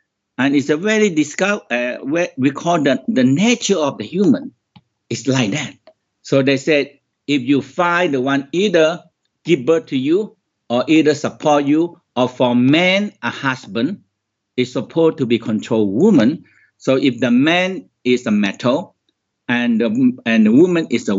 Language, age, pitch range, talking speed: English, 60-79, 125-190 Hz, 165 wpm